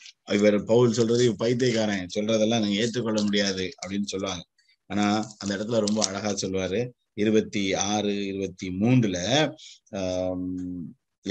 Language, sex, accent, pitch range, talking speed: Tamil, male, native, 105-145 Hz, 100 wpm